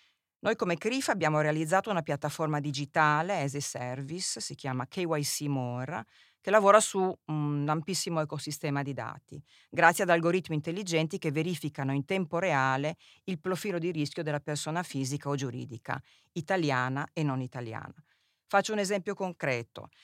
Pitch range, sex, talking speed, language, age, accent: 140-180 Hz, female, 145 wpm, Italian, 40-59, native